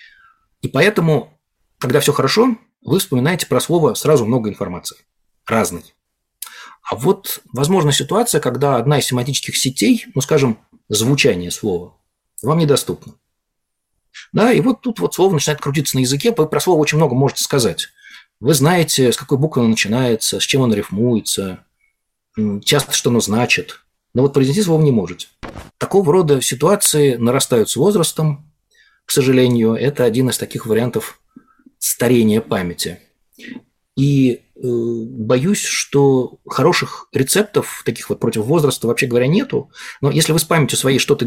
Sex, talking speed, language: male, 145 wpm, Russian